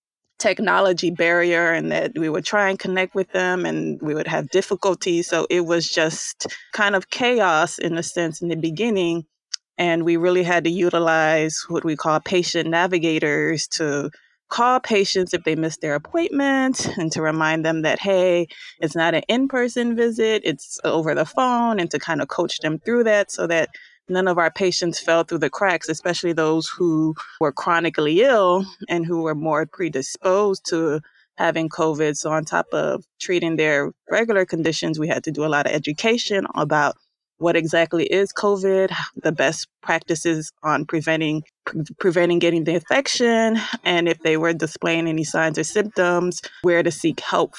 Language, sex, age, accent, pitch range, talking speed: English, female, 20-39, American, 160-190 Hz, 175 wpm